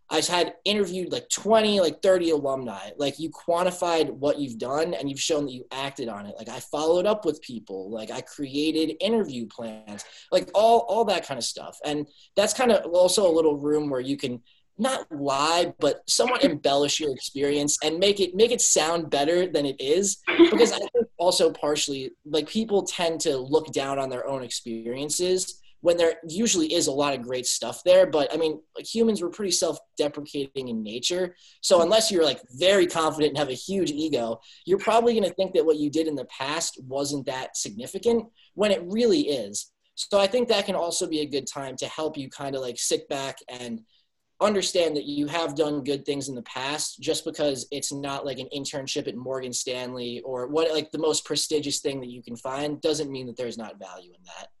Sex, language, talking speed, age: male, English, 210 wpm, 20-39